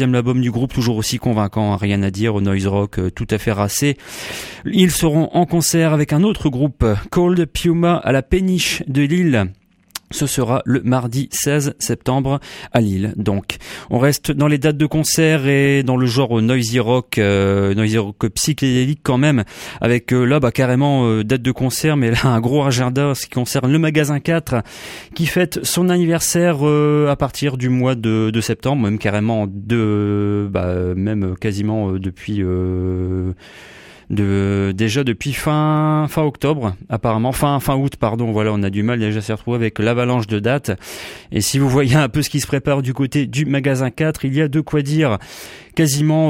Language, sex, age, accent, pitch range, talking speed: English, male, 30-49, French, 110-150 Hz, 190 wpm